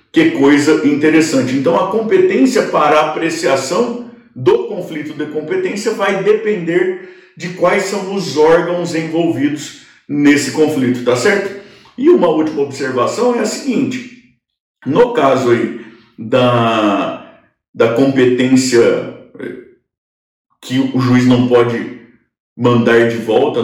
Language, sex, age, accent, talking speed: Portuguese, male, 50-69, Brazilian, 115 wpm